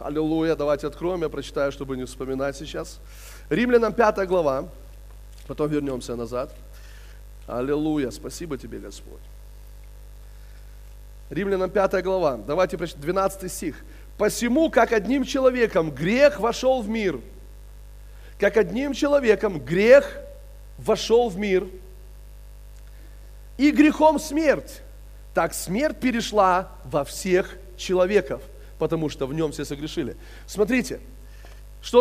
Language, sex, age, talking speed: Russian, male, 30-49, 105 wpm